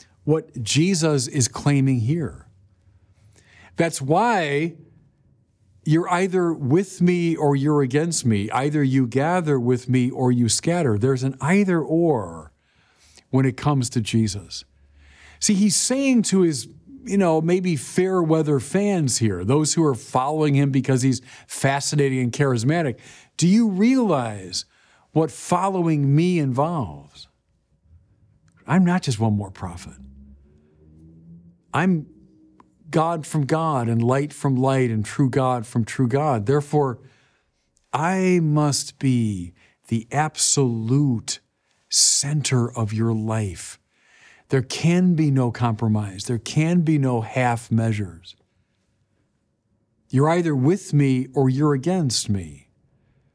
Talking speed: 120 wpm